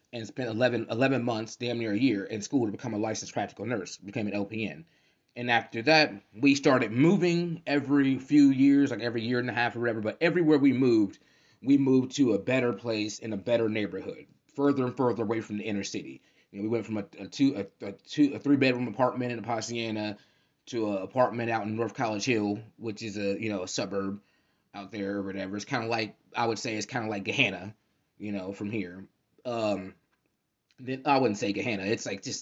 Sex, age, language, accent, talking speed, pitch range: male, 20-39, English, American, 220 wpm, 105-125 Hz